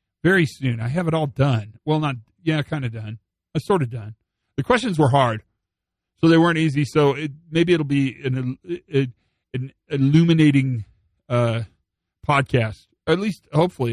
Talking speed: 170 wpm